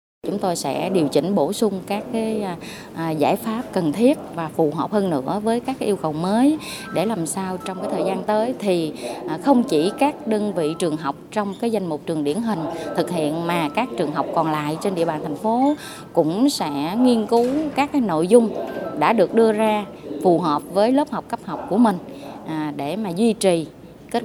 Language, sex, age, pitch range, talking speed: Vietnamese, female, 20-39, 170-255 Hz, 215 wpm